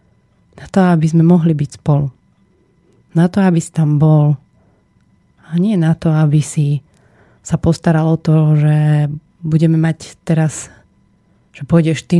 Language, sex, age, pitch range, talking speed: Slovak, female, 30-49, 160-185 Hz, 150 wpm